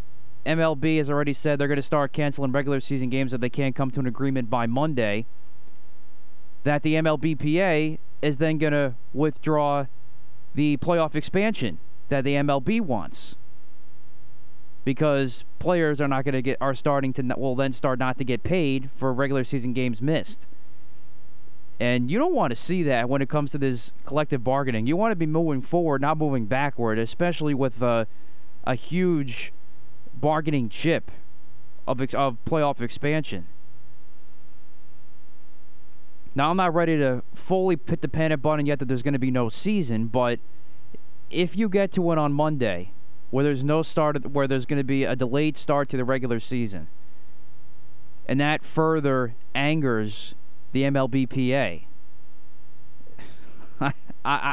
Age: 20-39